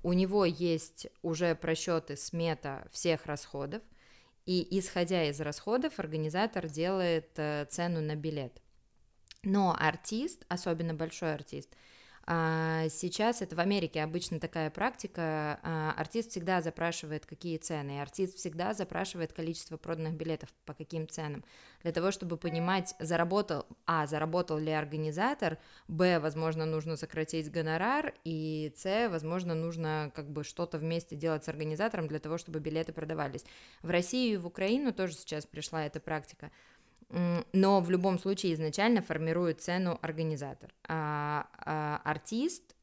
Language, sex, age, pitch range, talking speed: Russian, female, 20-39, 155-180 Hz, 130 wpm